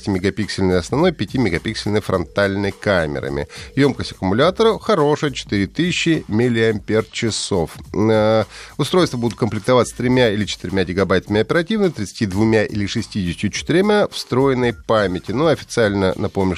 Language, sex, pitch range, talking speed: Russian, male, 105-145 Hz, 100 wpm